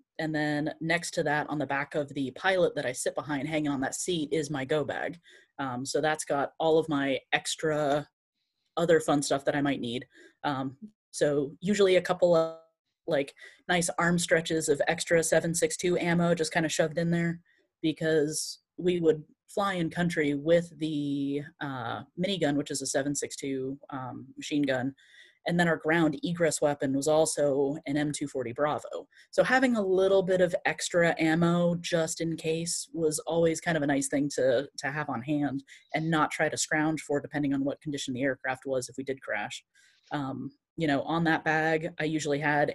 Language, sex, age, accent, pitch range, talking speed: English, female, 20-39, American, 145-170 Hz, 190 wpm